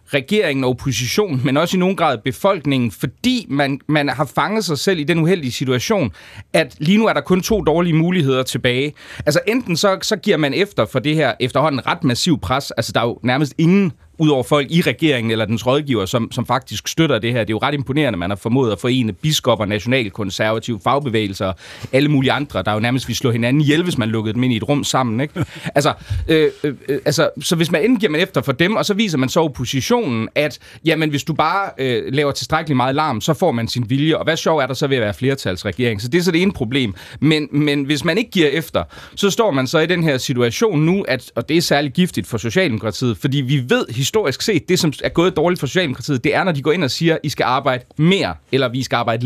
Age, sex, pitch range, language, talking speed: 30-49, male, 125-170 Hz, Danish, 245 wpm